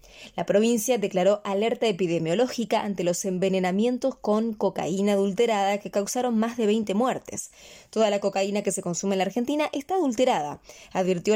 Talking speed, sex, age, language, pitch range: 155 wpm, female, 20-39, English, 200-250 Hz